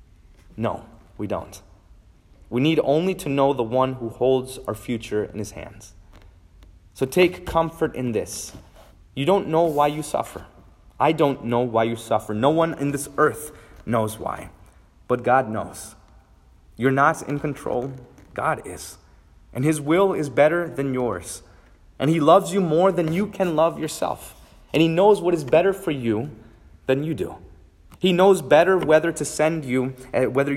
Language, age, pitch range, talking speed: English, 30-49, 105-145 Hz, 170 wpm